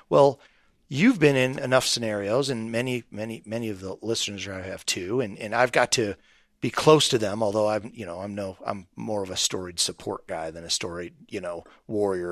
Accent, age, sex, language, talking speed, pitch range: American, 40-59, male, English, 215 wpm, 105-145 Hz